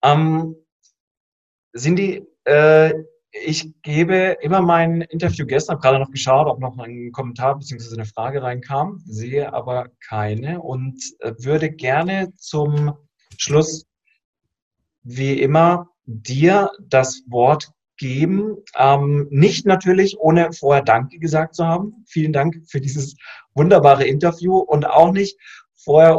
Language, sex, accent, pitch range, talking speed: German, male, German, 130-165 Hz, 125 wpm